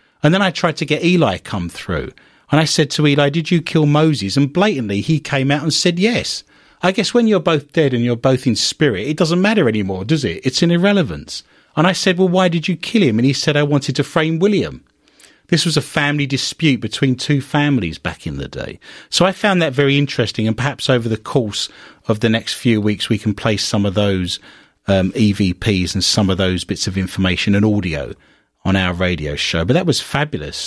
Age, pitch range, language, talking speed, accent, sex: 40-59, 105-150 Hz, English, 225 wpm, British, male